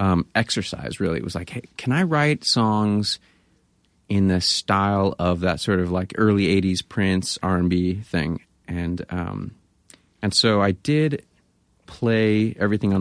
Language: English